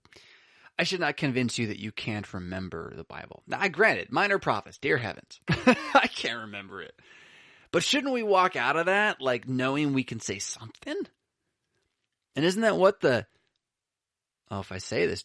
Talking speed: 175 wpm